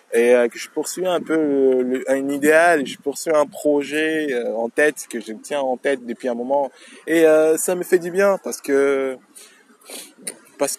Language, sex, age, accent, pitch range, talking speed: French, male, 20-39, French, 120-160 Hz, 210 wpm